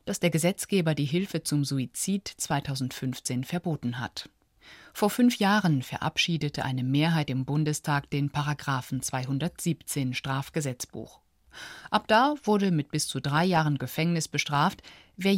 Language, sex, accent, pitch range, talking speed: German, female, German, 135-175 Hz, 130 wpm